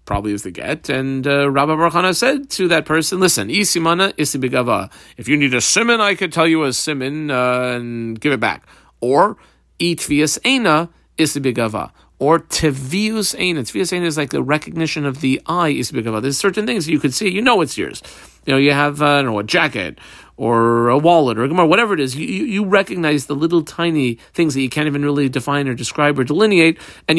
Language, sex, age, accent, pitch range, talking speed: English, male, 40-59, American, 120-165 Hz, 205 wpm